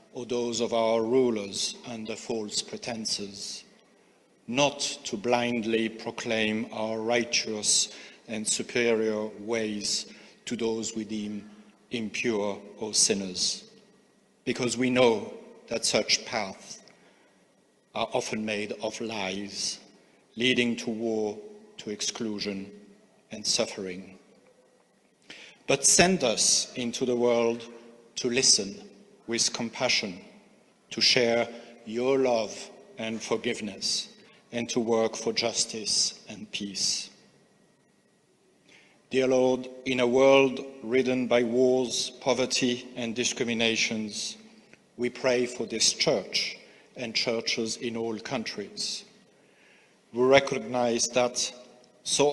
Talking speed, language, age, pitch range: 105 wpm, English, 50-69, 110-125 Hz